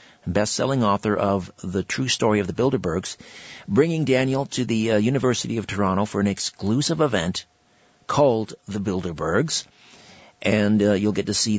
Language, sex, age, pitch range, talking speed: English, male, 50-69, 100-135 Hz, 155 wpm